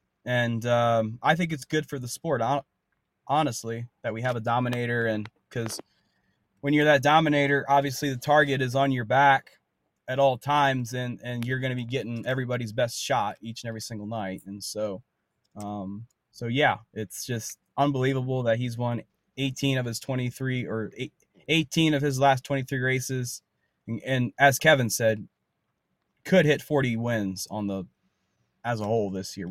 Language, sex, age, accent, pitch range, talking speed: English, male, 20-39, American, 110-140 Hz, 170 wpm